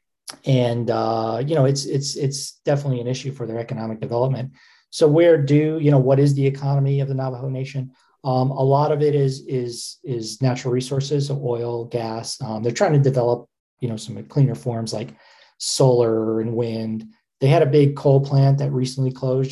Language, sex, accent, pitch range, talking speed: English, male, American, 120-140 Hz, 195 wpm